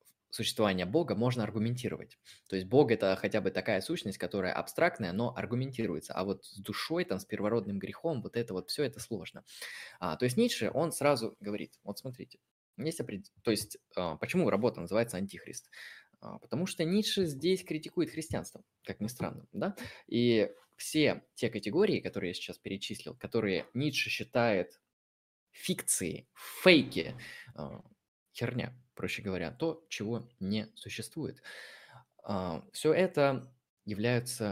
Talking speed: 145 wpm